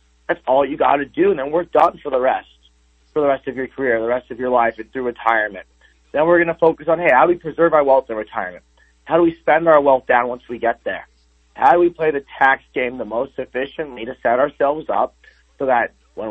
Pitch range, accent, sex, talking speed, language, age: 105-150 Hz, American, male, 260 wpm, English, 30-49